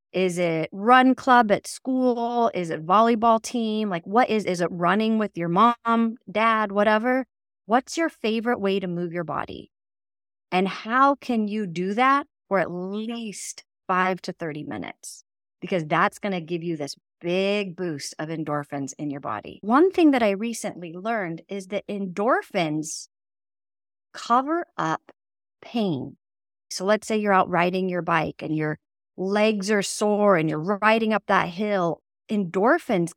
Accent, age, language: American, 30-49, English